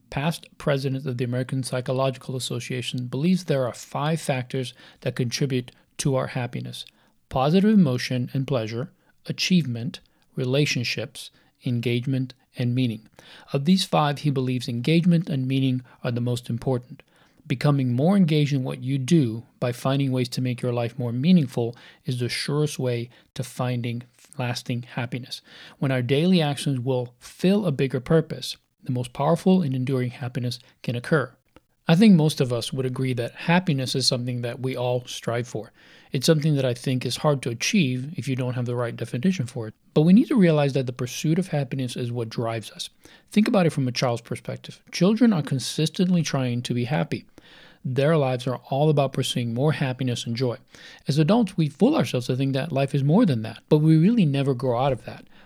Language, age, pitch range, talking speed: English, 40-59, 125-155 Hz, 185 wpm